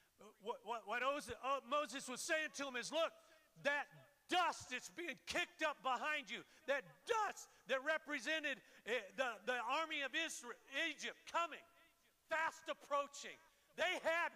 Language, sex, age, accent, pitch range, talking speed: English, male, 50-69, American, 210-295 Hz, 150 wpm